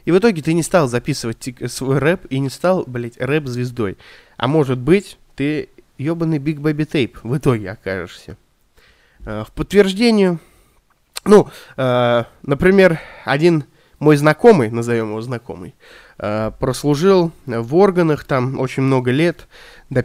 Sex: male